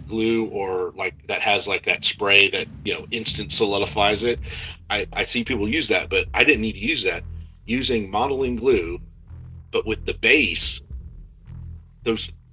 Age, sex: 40-59, male